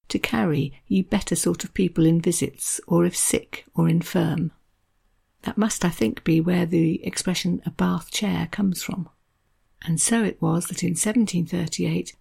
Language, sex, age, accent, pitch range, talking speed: English, female, 50-69, British, 160-200 Hz, 165 wpm